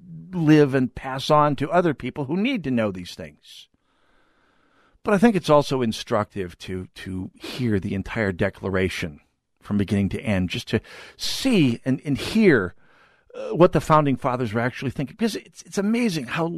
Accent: American